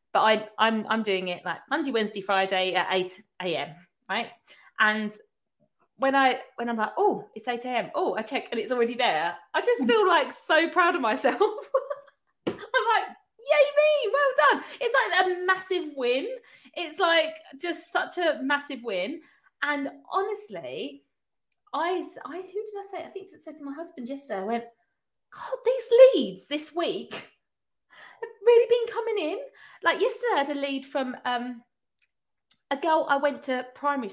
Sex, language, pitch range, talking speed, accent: female, English, 220-340 Hz, 175 wpm, British